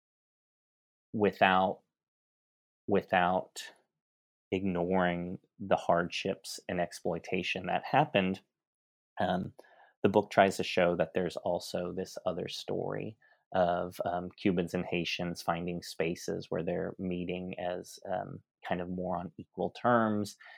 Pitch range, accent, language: 85-95 Hz, American, English